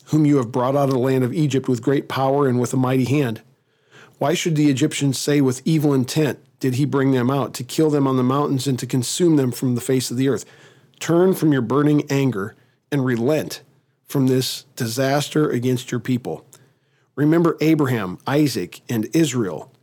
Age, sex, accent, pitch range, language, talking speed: 40-59, male, American, 125-140 Hz, English, 195 wpm